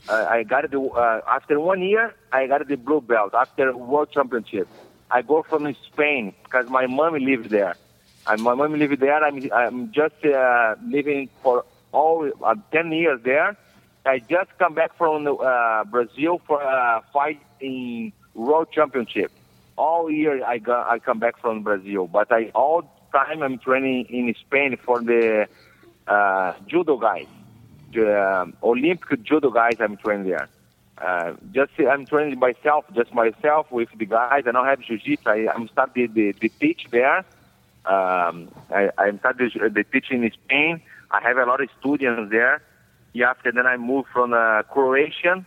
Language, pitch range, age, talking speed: English, 115-145 Hz, 50-69, 165 wpm